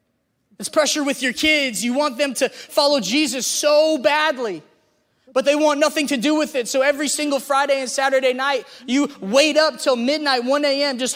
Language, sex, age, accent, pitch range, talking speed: English, male, 20-39, American, 240-285 Hz, 195 wpm